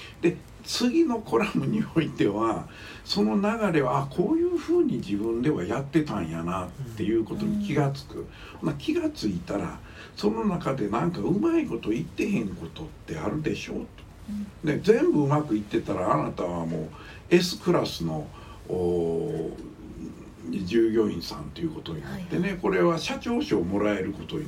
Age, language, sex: 60-79, Japanese, male